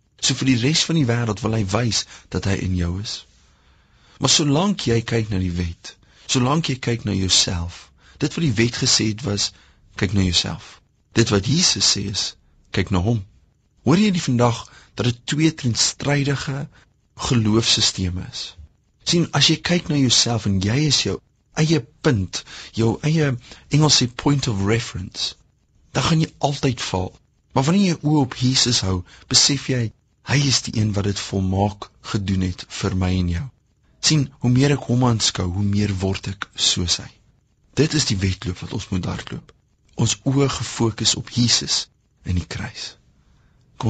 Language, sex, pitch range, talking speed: English, male, 95-130 Hz, 180 wpm